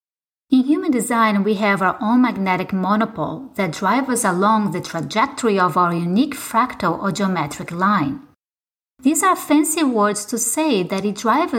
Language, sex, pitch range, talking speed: English, female, 190-275 Hz, 160 wpm